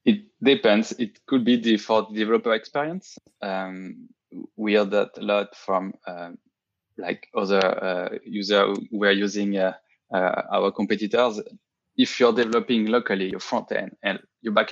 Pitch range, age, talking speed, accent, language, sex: 100-120 Hz, 20-39, 155 wpm, French, English, male